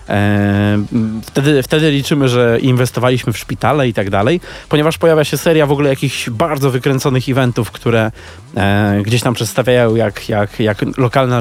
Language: Polish